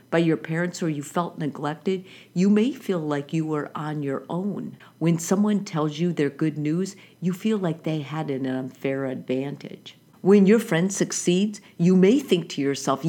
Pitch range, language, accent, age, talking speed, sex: 155-200 Hz, English, American, 50-69, 185 wpm, female